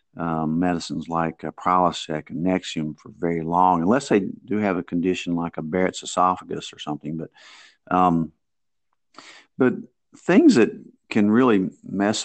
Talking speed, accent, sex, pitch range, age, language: 145 wpm, American, male, 85-100 Hz, 50-69, English